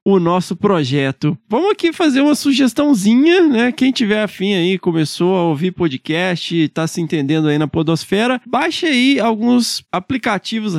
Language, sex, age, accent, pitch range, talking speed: Portuguese, male, 20-39, Brazilian, 175-230 Hz, 150 wpm